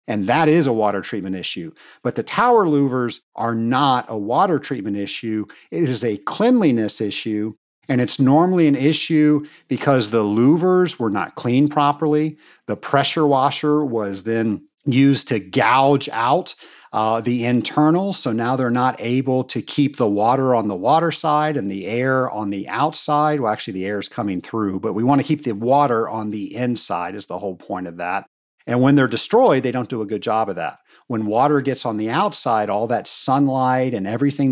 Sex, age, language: male, 50-69, English